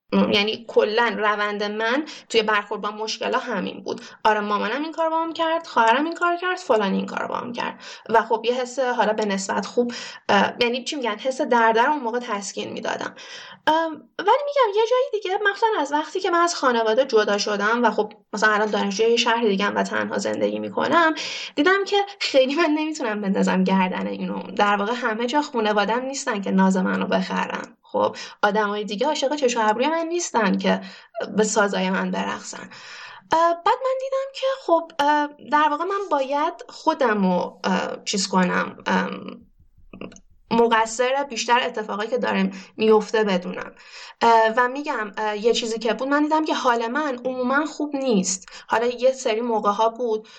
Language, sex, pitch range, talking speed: Persian, female, 215-290 Hz, 165 wpm